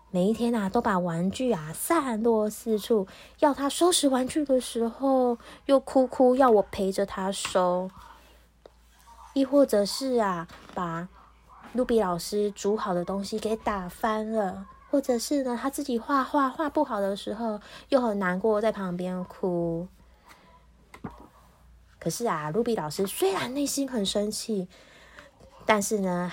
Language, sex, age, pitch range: Chinese, female, 20-39, 175-235 Hz